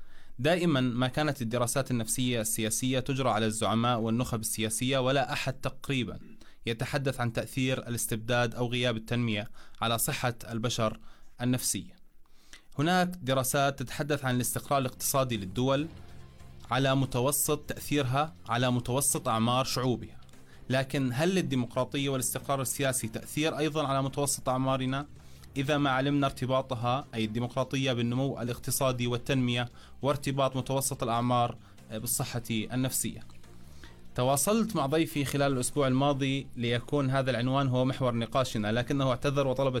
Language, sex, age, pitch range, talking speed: Arabic, male, 20-39, 115-140 Hz, 120 wpm